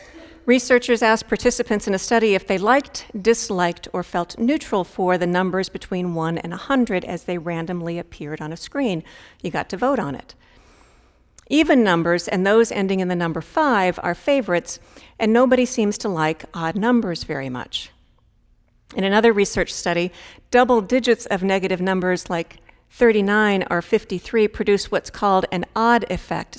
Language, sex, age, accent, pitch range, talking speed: English, female, 50-69, American, 180-225 Hz, 160 wpm